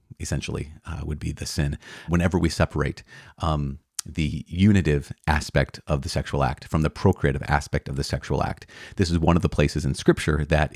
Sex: male